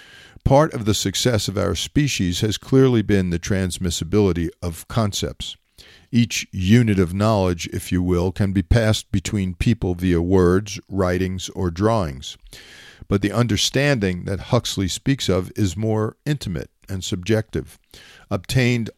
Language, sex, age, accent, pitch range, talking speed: English, male, 50-69, American, 90-110 Hz, 140 wpm